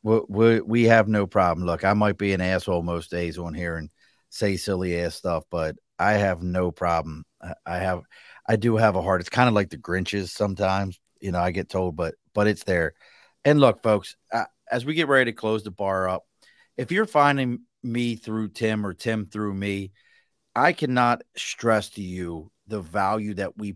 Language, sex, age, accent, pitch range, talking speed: English, male, 40-59, American, 95-110 Hz, 205 wpm